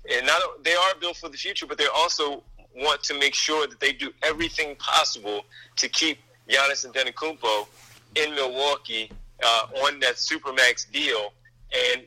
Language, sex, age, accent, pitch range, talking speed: English, male, 30-49, American, 120-170 Hz, 165 wpm